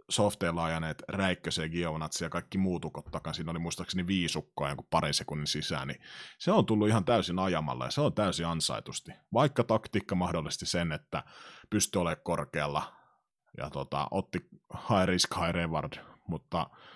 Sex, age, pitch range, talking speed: male, 30-49, 85-115 Hz, 150 wpm